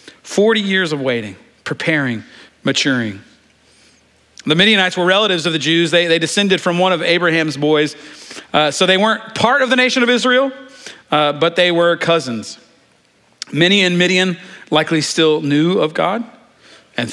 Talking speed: 160 wpm